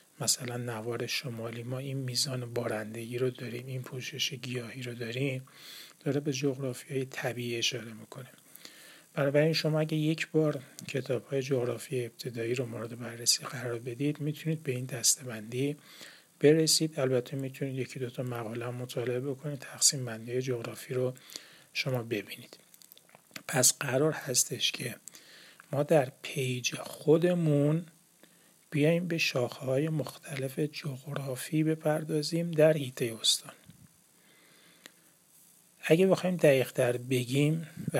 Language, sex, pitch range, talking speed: Persian, male, 125-155 Hz, 125 wpm